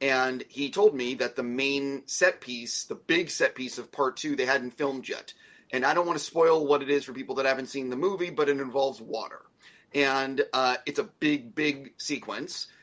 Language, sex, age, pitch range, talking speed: English, male, 30-49, 130-160 Hz, 220 wpm